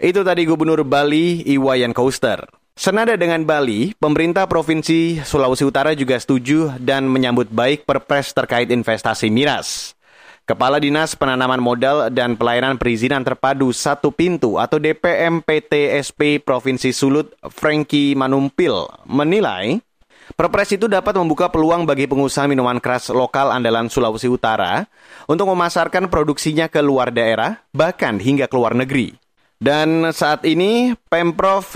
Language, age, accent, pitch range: Indonesian, 30-49, native, 130-170 Hz